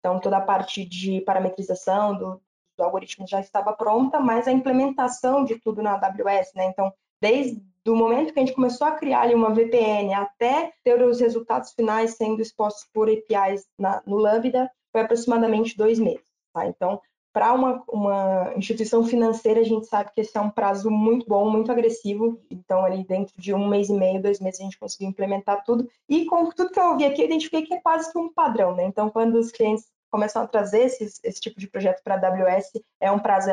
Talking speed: 210 wpm